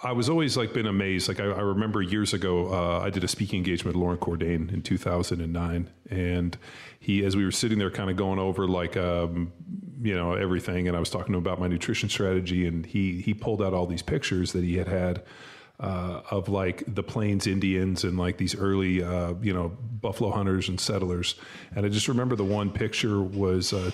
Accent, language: American, English